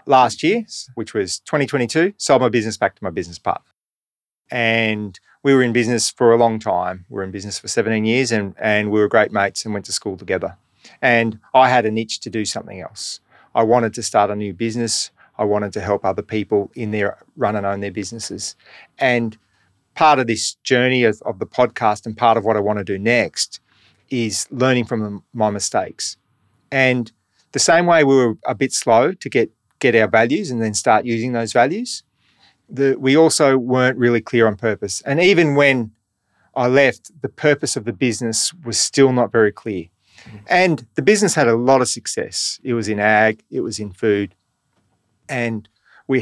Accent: Australian